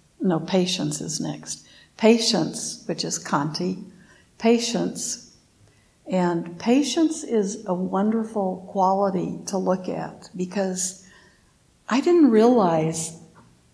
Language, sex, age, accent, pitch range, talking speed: English, female, 60-79, American, 175-215 Hz, 95 wpm